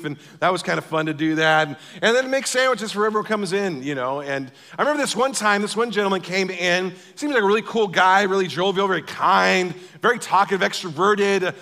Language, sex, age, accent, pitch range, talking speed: English, male, 40-59, American, 165-215 Hz, 230 wpm